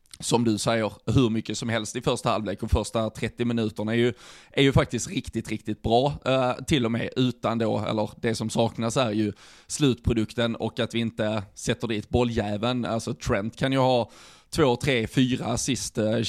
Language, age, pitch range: Swedish, 20-39, 110-130 Hz